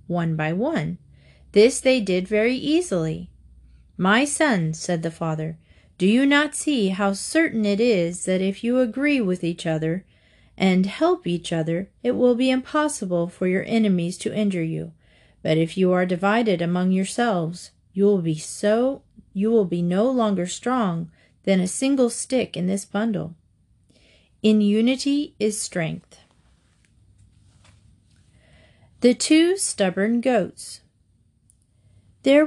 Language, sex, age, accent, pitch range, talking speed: English, female, 40-59, American, 175-245 Hz, 135 wpm